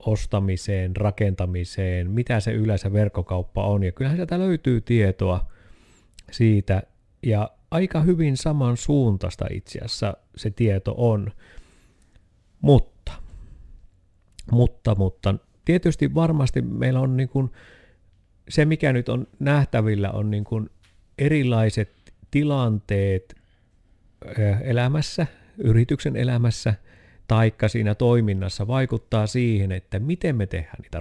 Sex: male